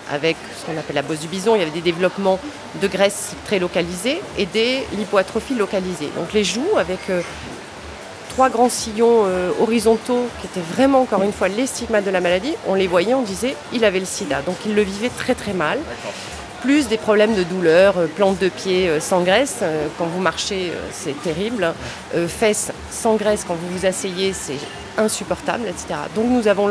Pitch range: 180-225 Hz